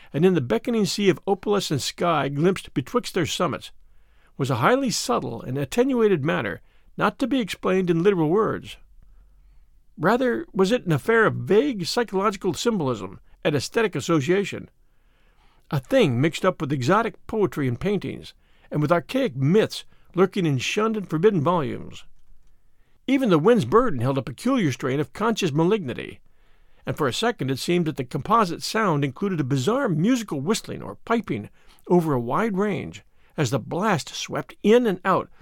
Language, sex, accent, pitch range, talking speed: English, male, American, 150-220 Hz, 165 wpm